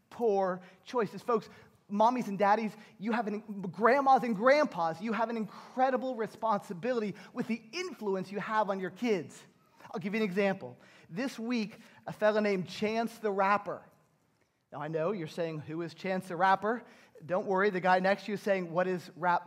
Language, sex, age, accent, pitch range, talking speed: English, male, 30-49, American, 185-220 Hz, 185 wpm